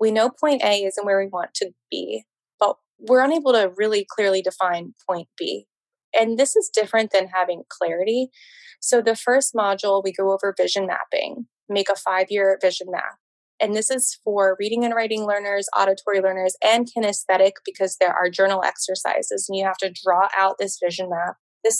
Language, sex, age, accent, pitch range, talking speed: English, female, 20-39, American, 190-230 Hz, 185 wpm